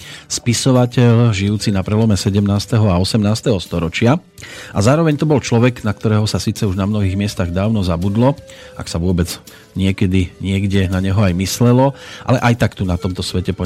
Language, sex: Slovak, male